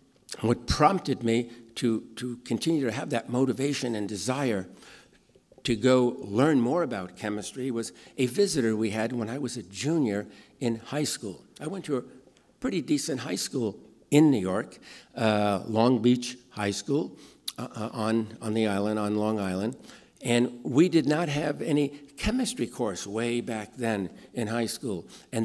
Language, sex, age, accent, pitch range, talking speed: English, male, 60-79, American, 110-140 Hz, 165 wpm